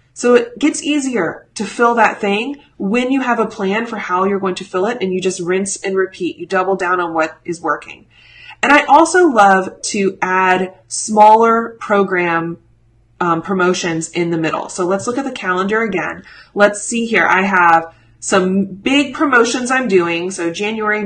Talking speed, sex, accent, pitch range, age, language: 185 wpm, female, American, 180-230 Hz, 30-49, English